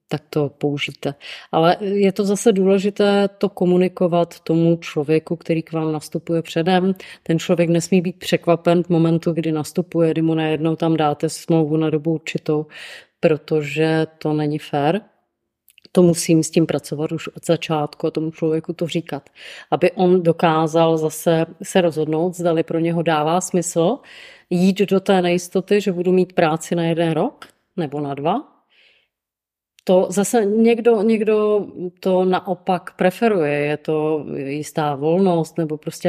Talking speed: 150 wpm